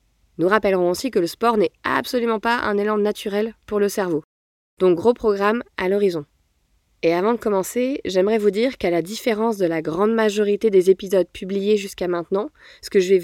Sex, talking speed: female, 195 wpm